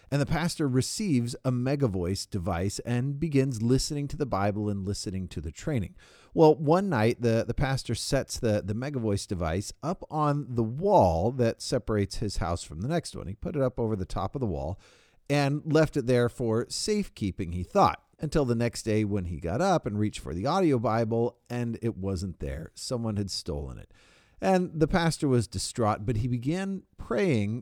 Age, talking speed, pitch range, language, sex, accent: 40-59, 195 wpm, 105-145 Hz, English, male, American